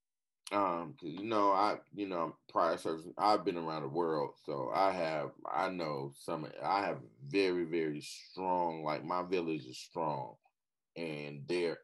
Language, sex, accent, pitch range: English, male, American, 85-115 Hz